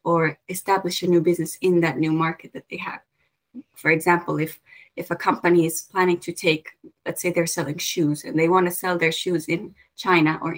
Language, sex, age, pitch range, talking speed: Finnish, female, 20-39, 170-185 Hz, 210 wpm